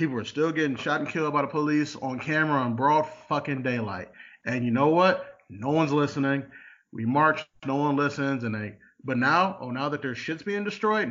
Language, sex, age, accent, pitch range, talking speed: English, male, 30-49, American, 140-185 Hz, 210 wpm